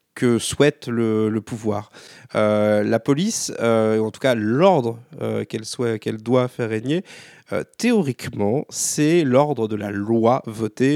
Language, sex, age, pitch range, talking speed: French, male, 40-59, 110-135 Hz, 155 wpm